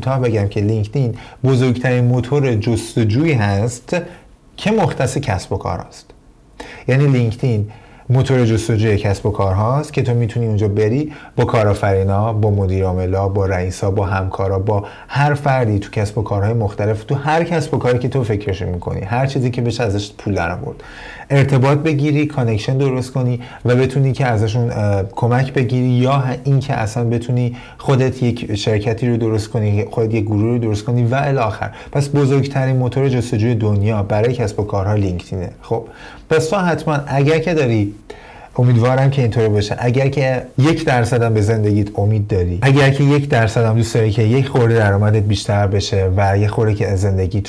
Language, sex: Persian, male